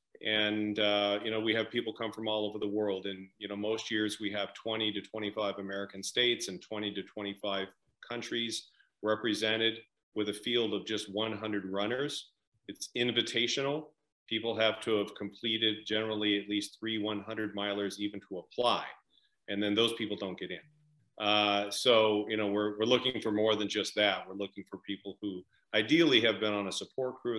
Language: English